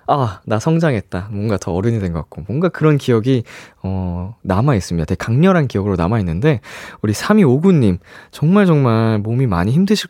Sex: male